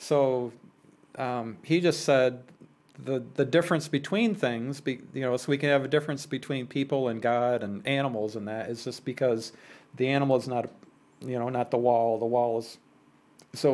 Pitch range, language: 120-155 Hz, English